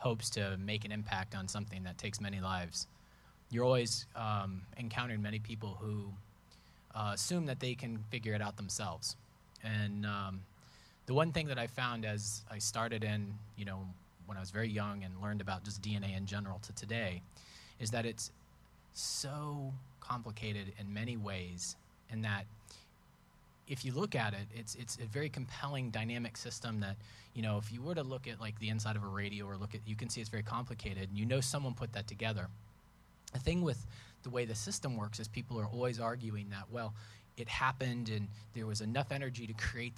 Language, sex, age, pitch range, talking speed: English, male, 30-49, 105-120 Hz, 200 wpm